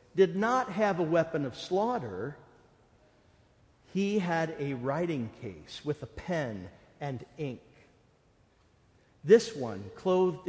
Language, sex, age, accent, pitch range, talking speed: English, male, 50-69, American, 130-175 Hz, 115 wpm